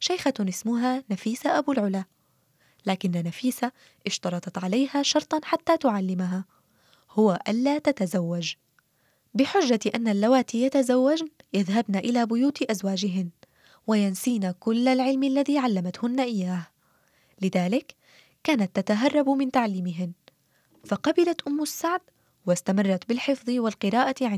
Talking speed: 100 wpm